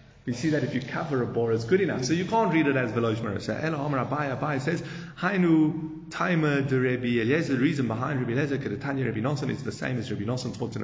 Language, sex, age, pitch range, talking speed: English, male, 30-49, 110-135 Hz, 240 wpm